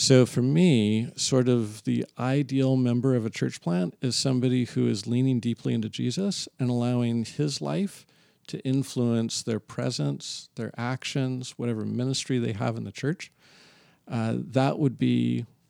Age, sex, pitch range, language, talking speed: 50-69, male, 115-135 Hz, English, 155 wpm